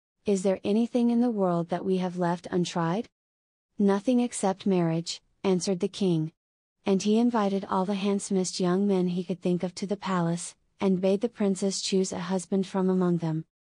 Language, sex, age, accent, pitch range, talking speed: English, female, 30-49, American, 180-200 Hz, 185 wpm